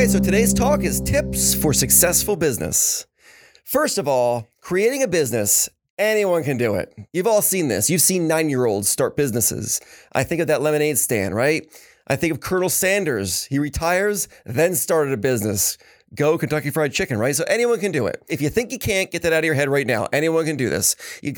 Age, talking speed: 30-49, 205 wpm